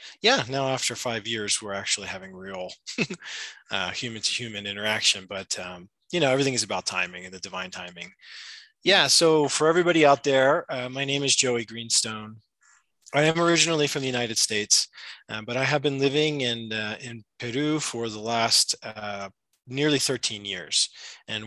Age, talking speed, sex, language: 20-39, 175 wpm, male, English